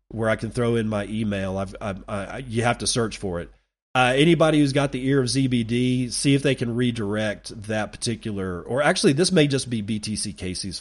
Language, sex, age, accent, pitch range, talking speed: English, male, 40-59, American, 95-130 Hz, 220 wpm